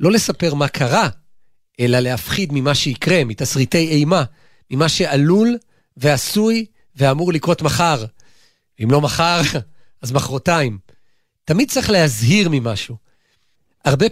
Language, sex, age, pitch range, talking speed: Hebrew, male, 40-59, 130-175 Hz, 110 wpm